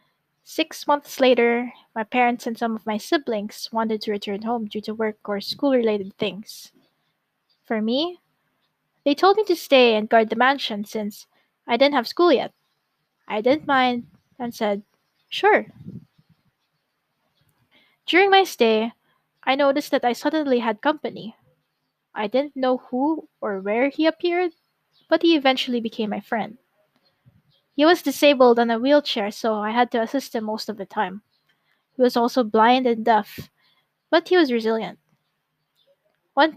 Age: 20-39